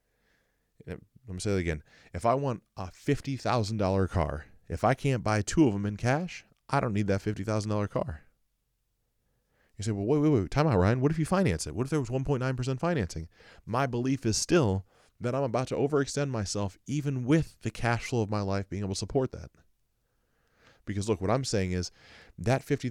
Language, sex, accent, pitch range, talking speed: English, male, American, 95-125 Hz, 220 wpm